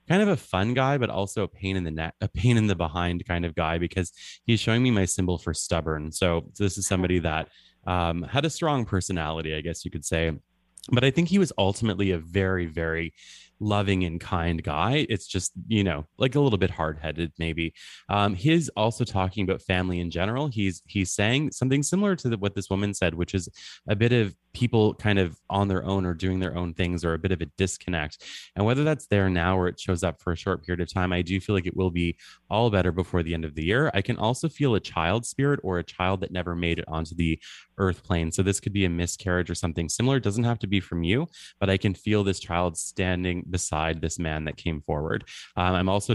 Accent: American